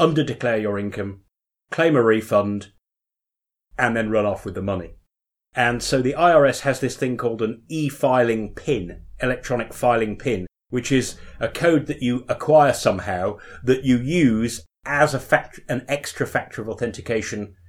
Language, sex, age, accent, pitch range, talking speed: English, male, 30-49, British, 110-140 Hz, 155 wpm